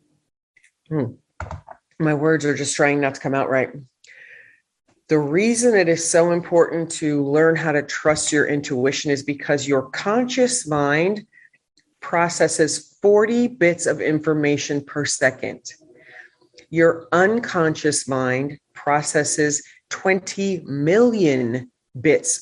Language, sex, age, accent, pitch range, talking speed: English, female, 40-59, American, 145-175 Hz, 115 wpm